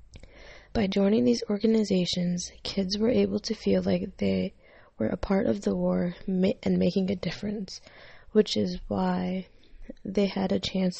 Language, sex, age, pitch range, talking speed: English, female, 20-39, 185-210 Hz, 155 wpm